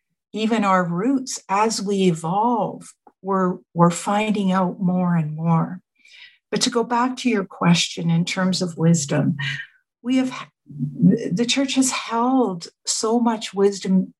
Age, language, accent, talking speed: 60-79, English, American, 140 wpm